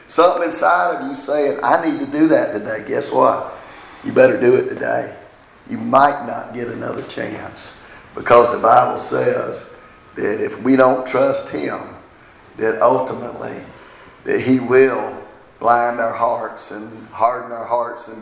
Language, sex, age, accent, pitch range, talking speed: English, male, 50-69, American, 115-135 Hz, 155 wpm